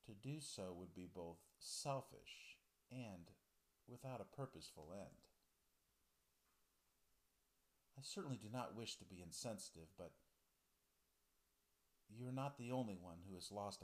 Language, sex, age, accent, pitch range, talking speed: English, male, 50-69, American, 90-130 Hz, 130 wpm